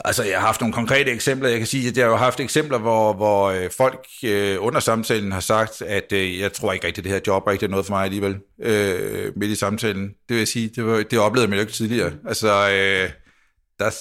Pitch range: 100-115 Hz